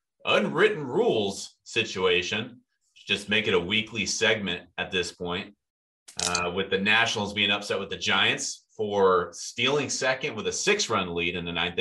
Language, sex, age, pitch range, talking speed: English, male, 30-49, 90-115 Hz, 160 wpm